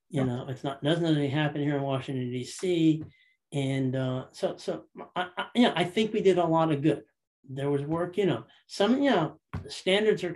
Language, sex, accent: English, male, American